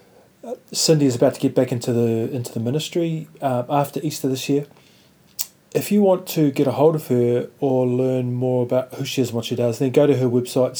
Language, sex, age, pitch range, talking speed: English, male, 30-49, 125-145 Hz, 230 wpm